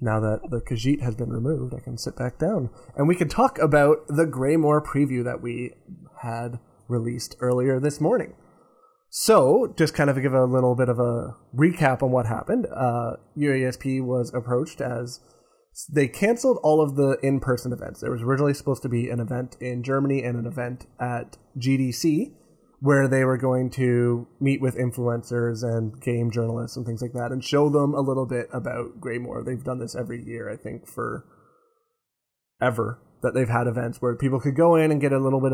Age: 20-39